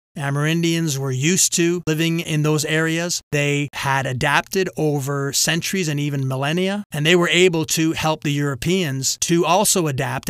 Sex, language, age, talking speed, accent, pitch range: male, English, 30-49, 155 wpm, American, 145-175 Hz